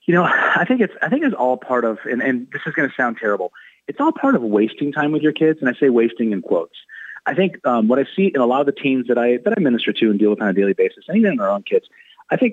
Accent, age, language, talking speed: American, 30-49, English, 320 wpm